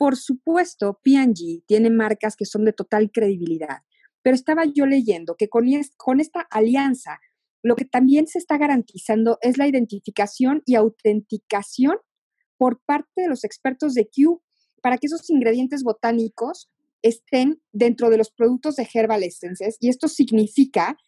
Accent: Mexican